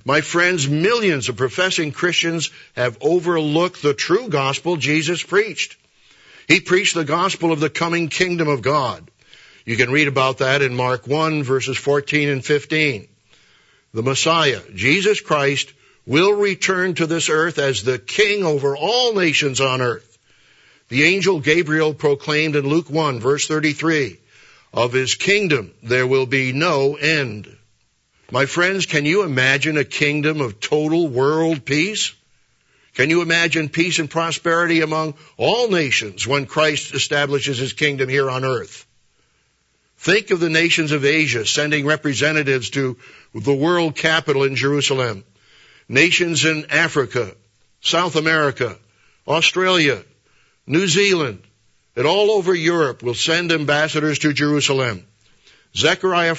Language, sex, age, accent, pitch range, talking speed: English, male, 60-79, American, 135-165 Hz, 135 wpm